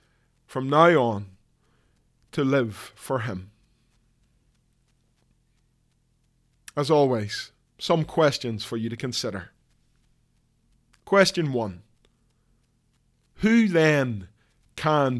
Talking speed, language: 80 wpm, English